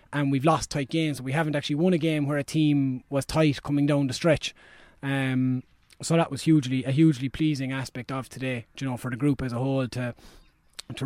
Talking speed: 220 wpm